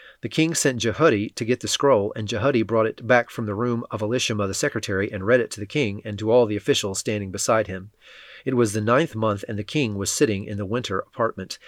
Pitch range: 105-130 Hz